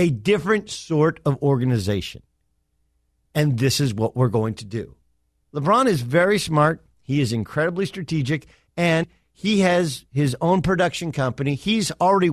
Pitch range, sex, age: 120-180 Hz, male, 50-69